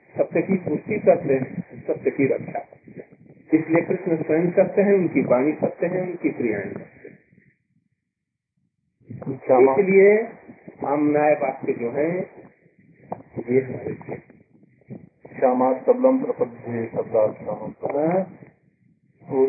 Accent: native